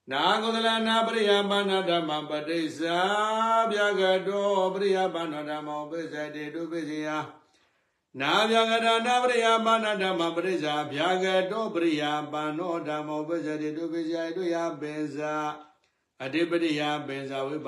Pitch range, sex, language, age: 150-200 Hz, male, English, 60-79